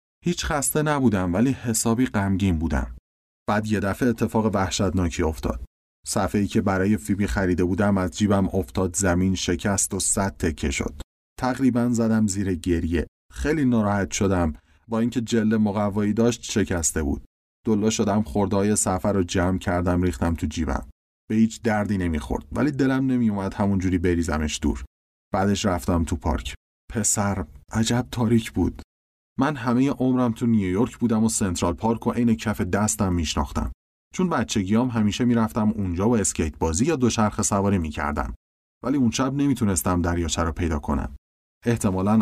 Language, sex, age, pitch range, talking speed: Persian, male, 30-49, 80-110 Hz, 150 wpm